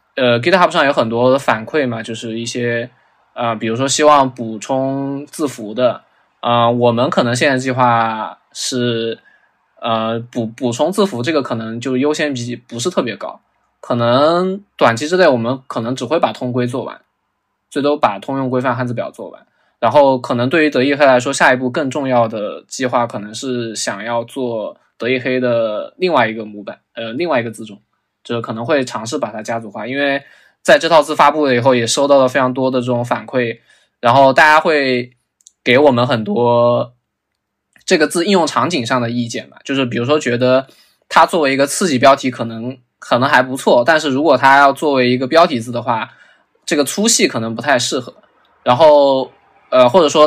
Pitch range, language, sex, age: 120-140 Hz, Chinese, male, 20-39